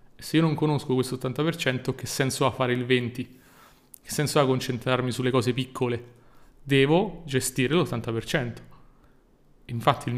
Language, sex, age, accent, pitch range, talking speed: Italian, male, 30-49, native, 125-160 Hz, 140 wpm